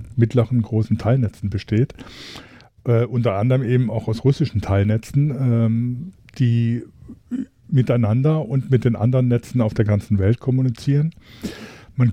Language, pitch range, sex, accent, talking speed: German, 110-125 Hz, male, German, 130 wpm